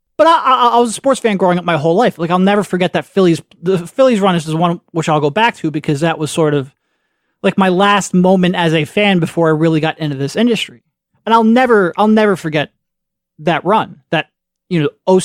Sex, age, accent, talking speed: male, 30-49, American, 235 wpm